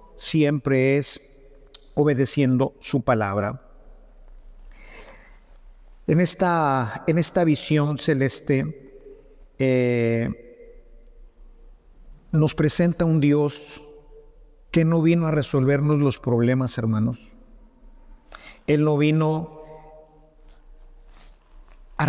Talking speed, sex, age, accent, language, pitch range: 75 wpm, male, 50-69, Mexican, English, 130-155 Hz